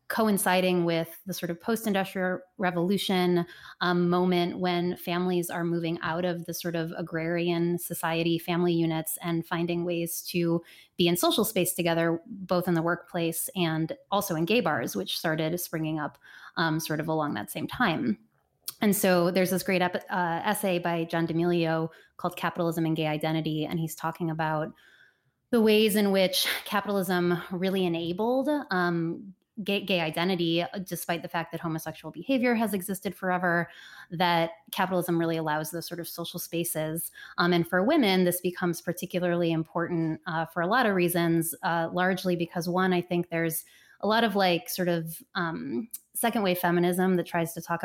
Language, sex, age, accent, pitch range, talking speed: English, female, 20-39, American, 165-185 Hz, 170 wpm